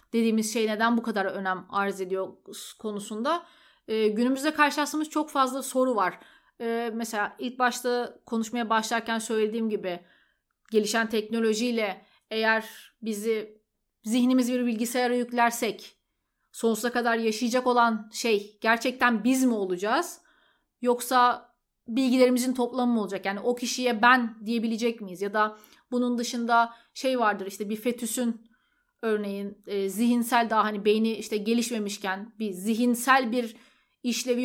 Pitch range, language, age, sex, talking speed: 220-250 Hz, Turkish, 30-49, female, 120 wpm